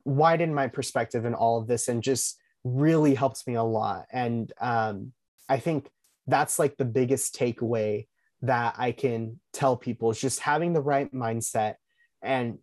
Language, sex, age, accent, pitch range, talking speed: English, male, 20-39, American, 125-160 Hz, 165 wpm